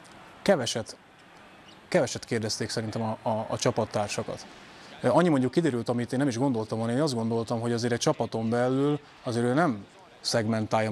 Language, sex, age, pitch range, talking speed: Hungarian, male, 20-39, 115-135 Hz, 155 wpm